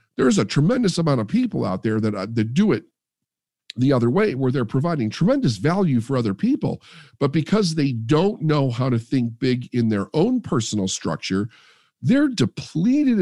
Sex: male